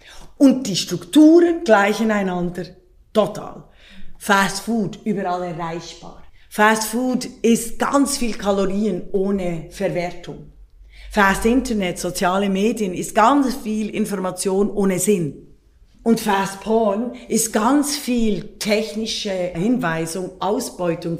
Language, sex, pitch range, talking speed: German, female, 180-225 Hz, 105 wpm